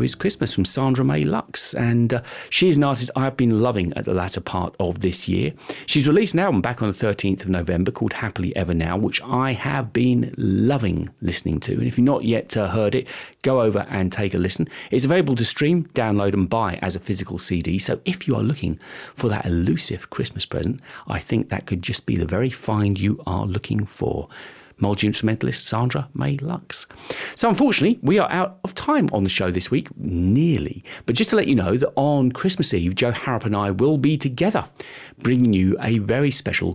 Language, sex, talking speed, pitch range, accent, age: English, male, 215 wpm, 100-140 Hz, British, 40-59